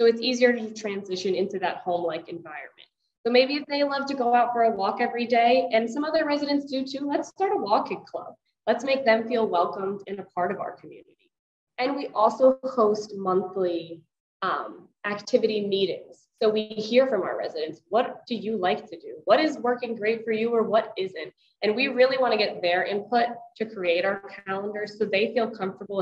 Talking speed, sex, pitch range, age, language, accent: 205 wpm, female, 195-255 Hz, 20-39, English, American